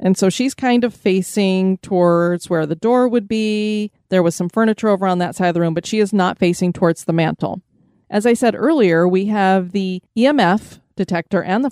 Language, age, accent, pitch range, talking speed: English, 30-49, American, 175-220 Hz, 215 wpm